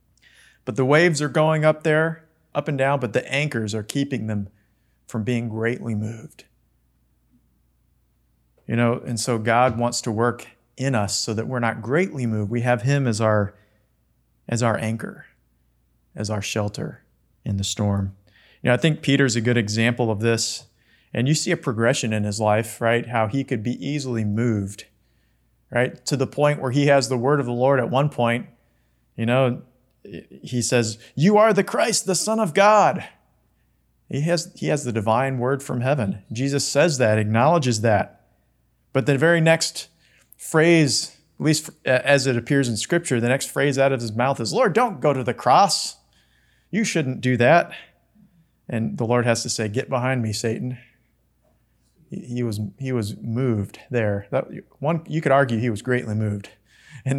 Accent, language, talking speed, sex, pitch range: American, English, 180 wpm, male, 110-140 Hz